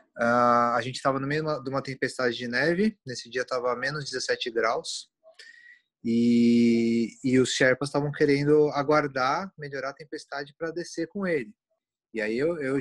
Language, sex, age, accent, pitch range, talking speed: Portuguese, male, 20-39, Brazilian, 125-155 Hz, 165 wpm